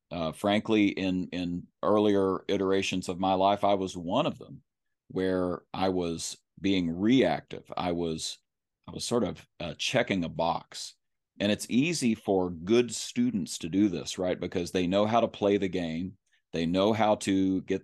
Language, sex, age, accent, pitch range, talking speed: English, male, 40-59, American, 85-100 Hz, 175 wpm